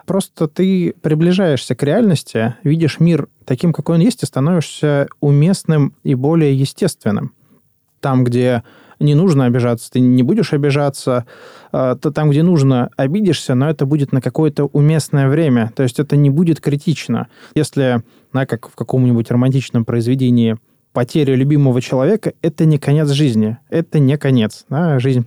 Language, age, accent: Russian, 20-39, native